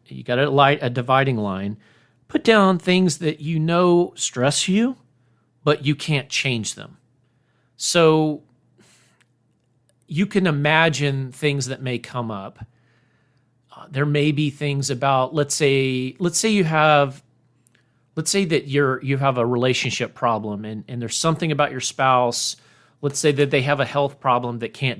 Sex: male